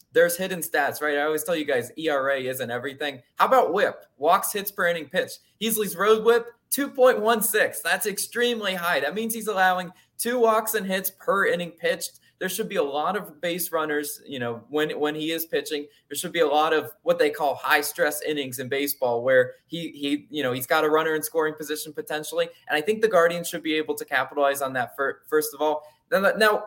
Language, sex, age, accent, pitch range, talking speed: English, male, 20-39, American, 150-210 Hz, 220 wpm